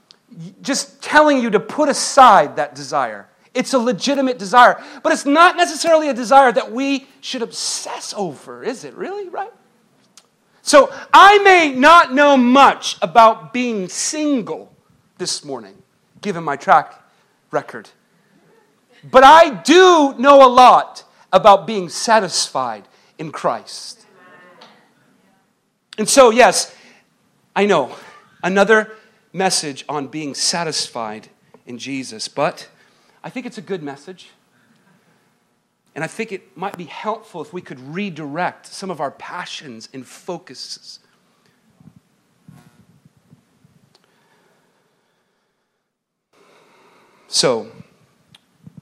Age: 40-59